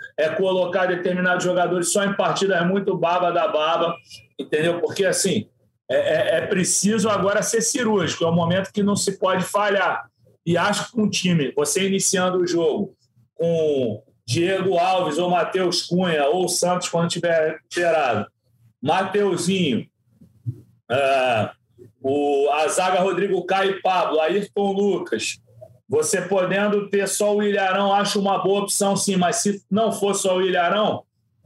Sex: male